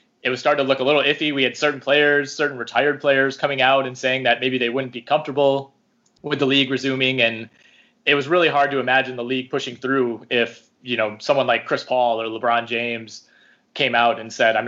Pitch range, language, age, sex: 120-145 Hz, English, 20-39, male